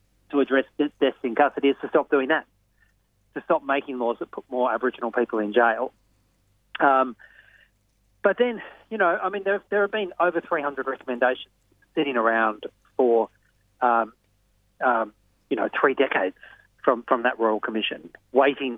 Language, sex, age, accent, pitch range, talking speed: English, male, 40-59, Australian, 110-135 Hz, 165 wpm